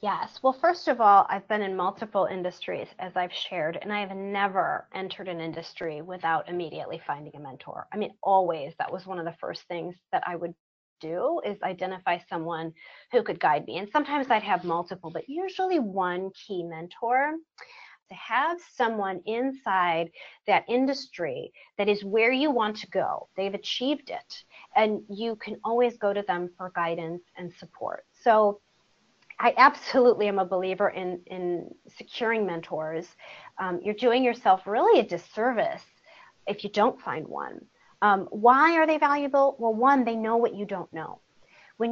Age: 30-49